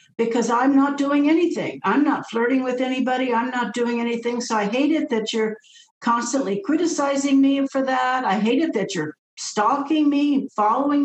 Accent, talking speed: American, 180 wpm